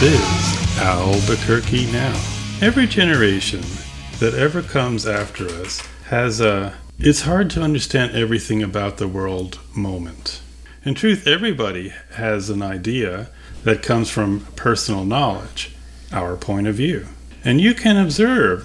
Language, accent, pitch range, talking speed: English, American, 90-135 Hz, 130 wpm